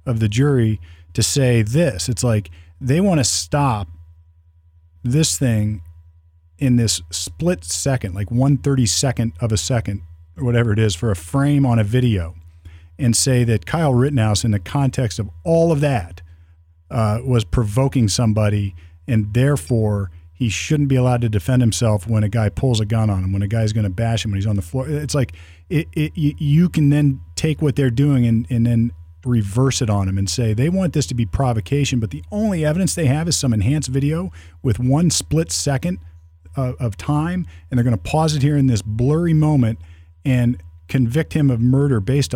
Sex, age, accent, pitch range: male, 40-59, American, 100-140 Hz